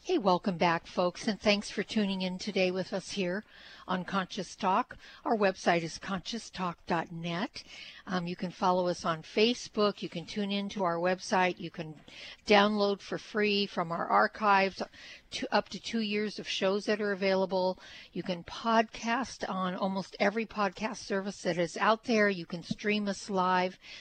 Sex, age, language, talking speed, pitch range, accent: female, 50-69, English, 165 wpm, 180-215 Hz, American